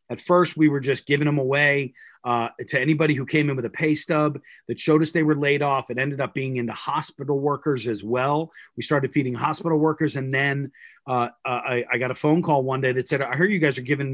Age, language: 30-49, English